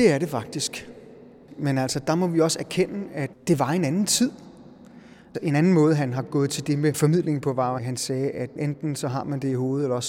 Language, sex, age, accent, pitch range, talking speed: Danish, male, 30-49, native, 130-160 Hz, 250 wpm